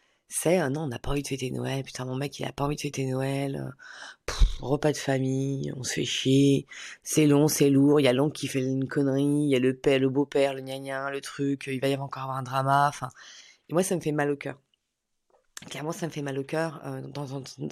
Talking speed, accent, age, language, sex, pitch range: 255 wpm, French, 30-49, French, female, 135-160 Hz